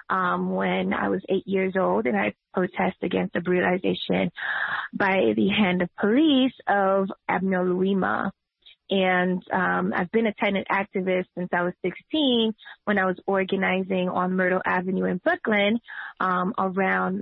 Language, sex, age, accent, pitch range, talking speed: English, female, 20-39, American, 185-210 Hz, 150 wpm